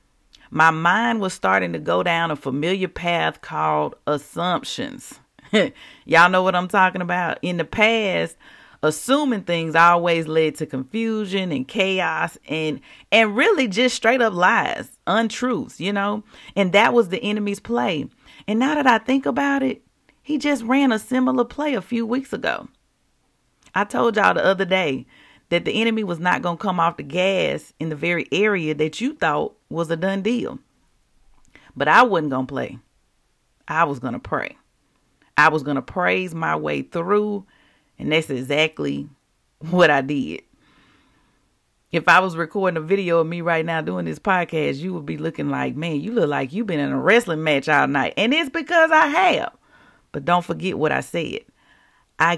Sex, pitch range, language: female, 155-220 Hz, English